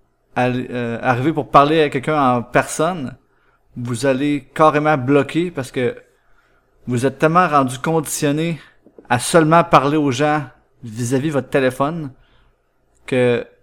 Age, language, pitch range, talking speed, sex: 30-49, French, 125-150 Hz, 125 wpm, male